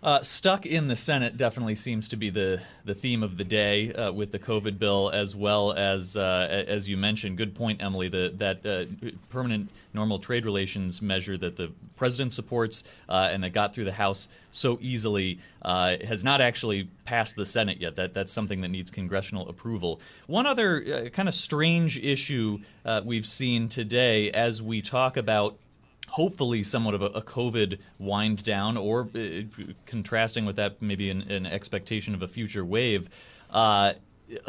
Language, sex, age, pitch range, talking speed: English, male, 30-49, 100-125 Hz, 175 wpm